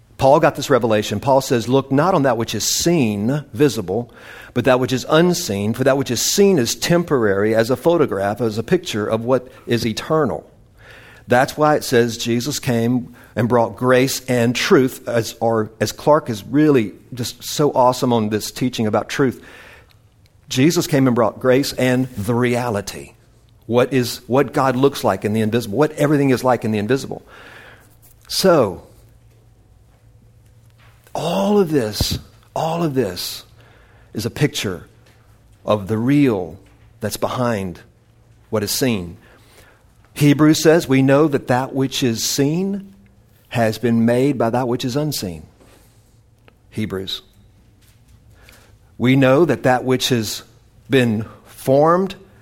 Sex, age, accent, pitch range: male, 50-69, American, 110-135 Hz